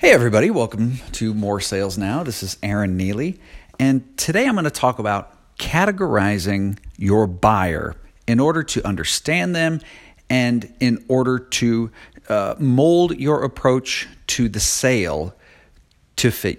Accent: American